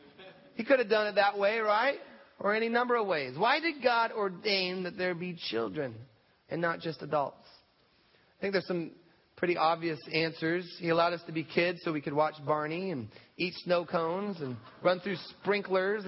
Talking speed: 190 wpm